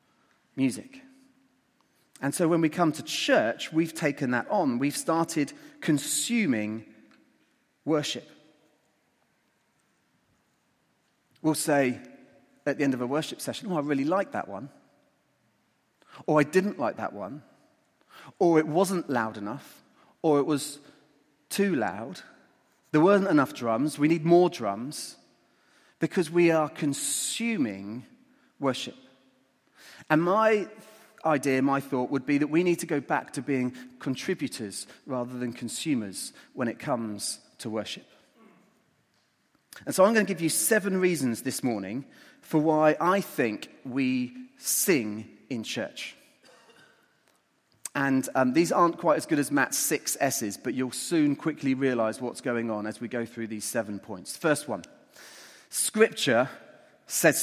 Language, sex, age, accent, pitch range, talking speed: English, male, 30-49, British, 130-175 Hz, 140 wpm